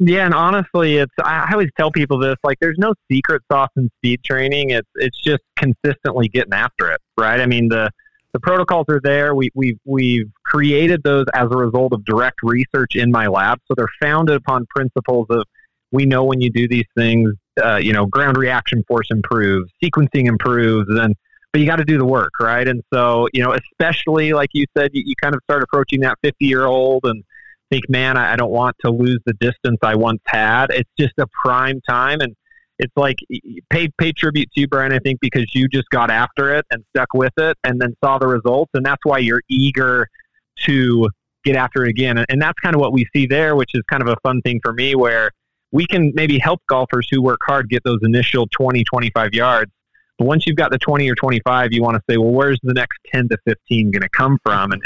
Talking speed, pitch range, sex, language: 225 wpm, 120-145 Hz, male, English